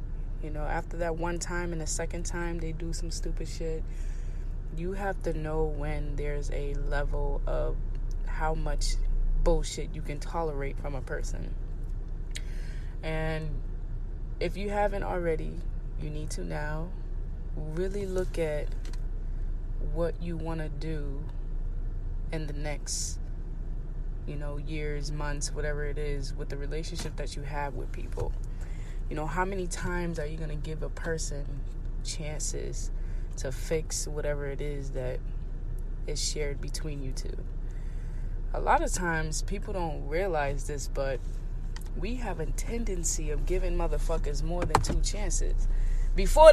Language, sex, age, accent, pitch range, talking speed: English, female, 20-39, American, 140-175 Hz, 145 wpm